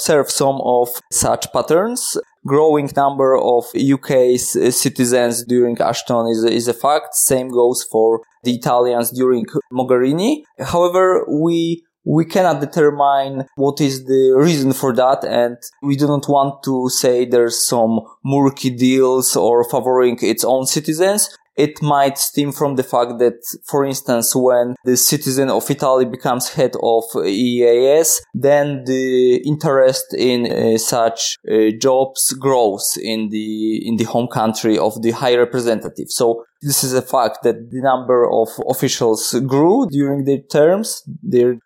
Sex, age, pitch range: male, 20-39, 120-145 Hz